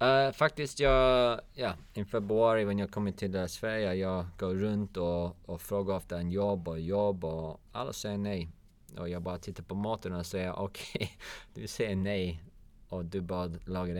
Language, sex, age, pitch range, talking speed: Swedish, male, 30-49, 85-105 Hz, 180 wpm